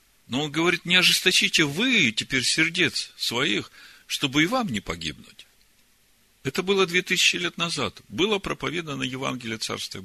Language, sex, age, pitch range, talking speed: Russian, male, 50-69, 105-150 Hz, 135 wpm